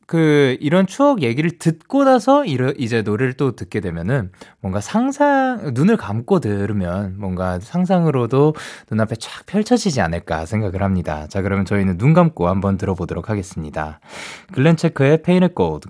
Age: 20-39